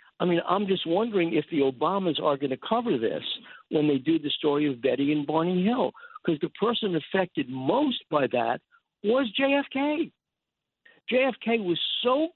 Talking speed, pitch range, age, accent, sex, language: 170 wpm, 155-230 Hz, 60-79, American, male, English